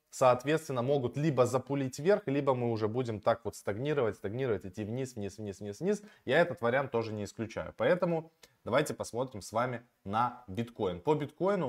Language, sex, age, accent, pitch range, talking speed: Russian, male, 20-39, native, 110-140 Hz, 175 wpm